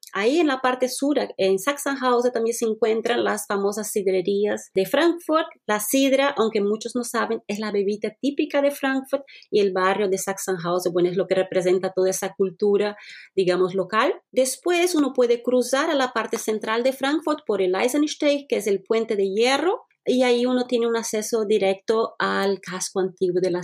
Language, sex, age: Spanish, female, 30-49